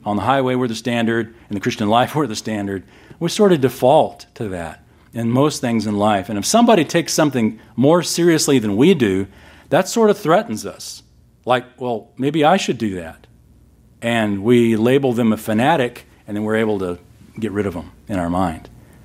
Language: English